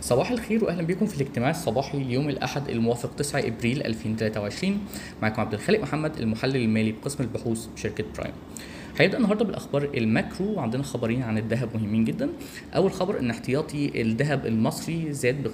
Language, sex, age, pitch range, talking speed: Arabic, male, 10-29, 110-145 Hz, 160 wpm